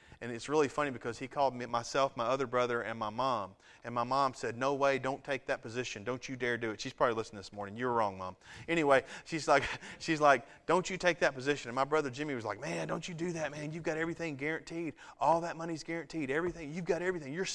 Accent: American